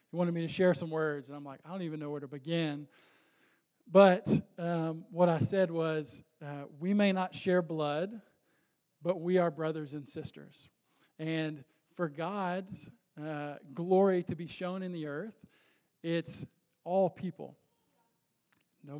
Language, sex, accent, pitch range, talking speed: English, male, American, 155-180 Hz, 160 wpm